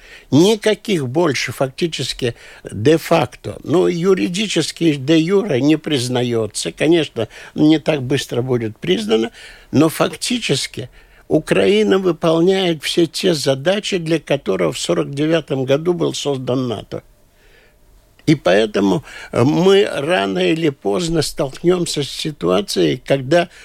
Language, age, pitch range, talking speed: Russian, 60-79, 125-165 Hz, 105 wpm